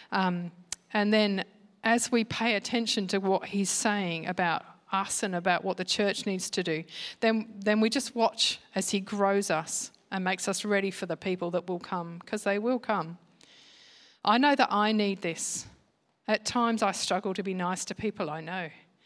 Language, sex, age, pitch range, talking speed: English, female, 40-59, 185-225 Hz, 190 wpm